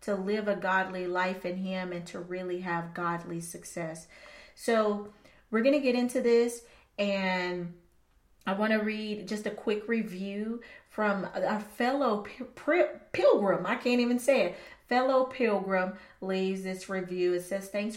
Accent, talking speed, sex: American, 155 wpm, female